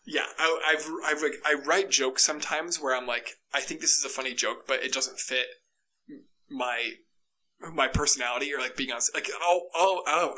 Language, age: English, 20-39